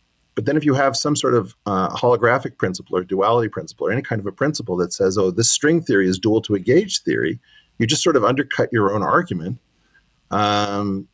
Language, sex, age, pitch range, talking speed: English, male, 40-59, 95-115 Hz, 220 wpm